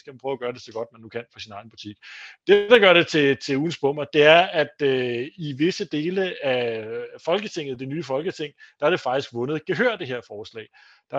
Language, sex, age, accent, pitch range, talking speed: Danish, male, 30-49, native, 115-155 Hz, 240 wpm